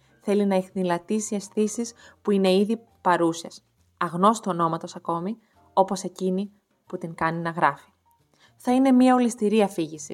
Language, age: Greek, 20-39